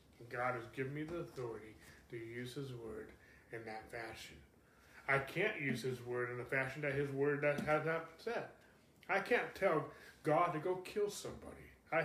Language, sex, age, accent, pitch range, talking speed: English, male, 30-49, American, 120-145 Hz, 180 wpm